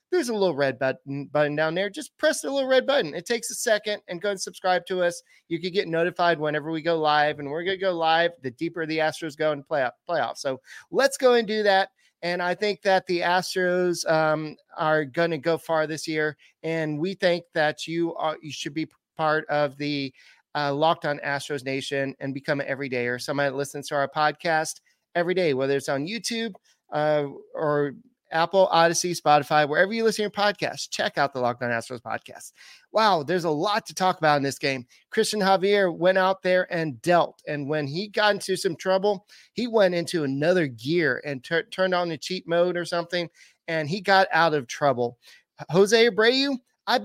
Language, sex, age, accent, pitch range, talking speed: English, male, 30-49, American, 150-195 Hz, 210 wpm